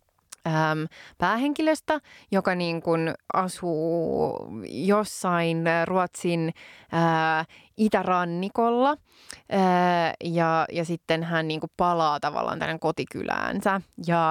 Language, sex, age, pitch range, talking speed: Finnish, female, 20-39, 165-195 Hz, 85 wpm